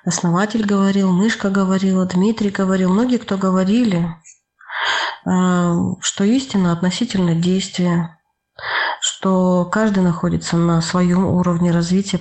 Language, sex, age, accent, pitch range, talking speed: Russian, female, 20-39, native, 175-195 Hz, 100 wpm